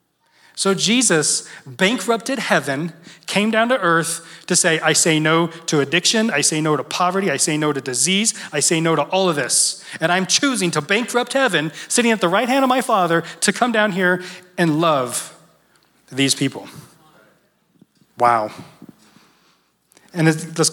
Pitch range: 150-205 Hz